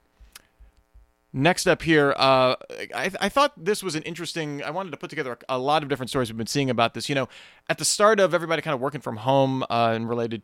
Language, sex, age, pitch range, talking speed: English, male, 30-49, 125-160 Hz, 240 wpm